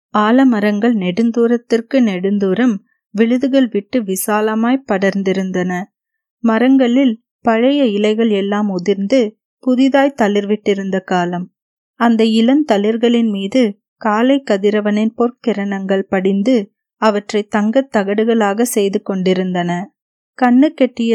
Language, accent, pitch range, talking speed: Tamil, native, 205-245 Hz, 80 wpm